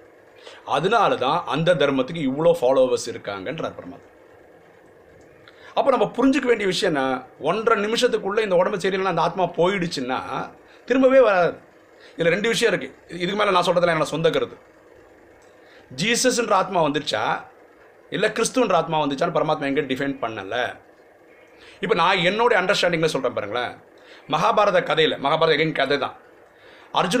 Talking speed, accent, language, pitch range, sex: 35 wpm, native, Tamil, 165-250 Hz, male